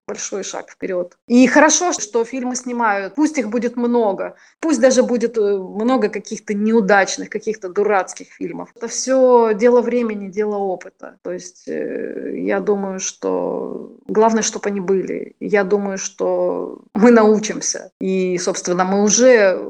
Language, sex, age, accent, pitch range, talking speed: Ukrainian, female, 30-49, native, 190-240 Hz, 135 wpm